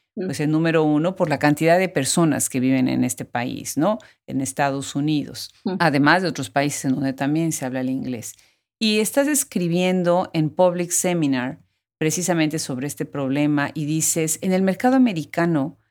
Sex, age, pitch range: female, 40-59, 135-180 Hz